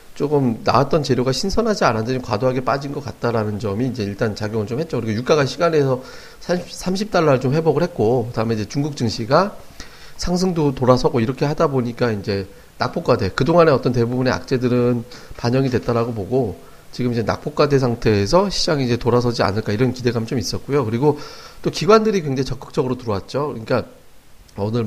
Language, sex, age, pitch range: Korean, male, 40-59, 115-155 Hz